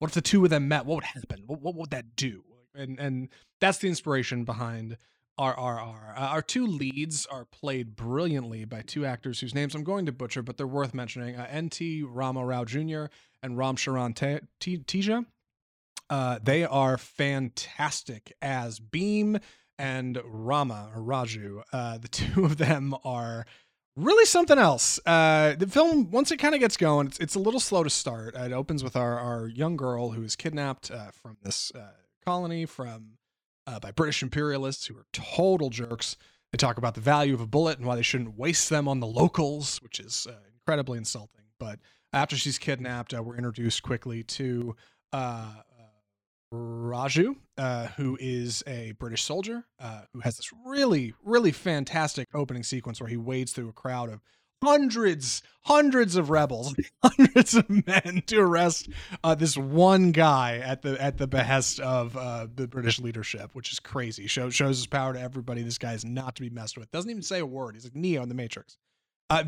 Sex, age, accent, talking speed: male, 20-39, American, 190 wpm